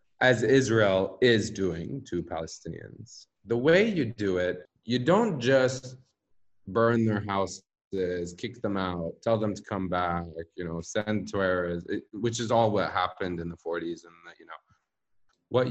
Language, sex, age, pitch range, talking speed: English, male, 30-49, 95-130 Hz, 160 wpm